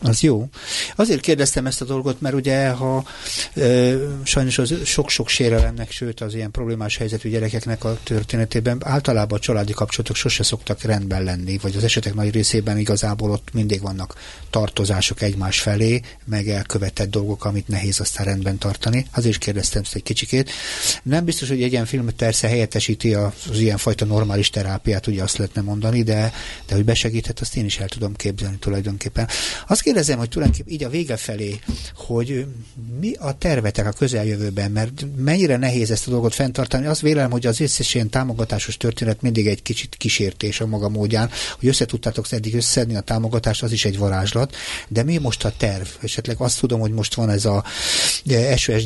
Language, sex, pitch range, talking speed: Hungarian, male, 105-125 Hz, 175 wpm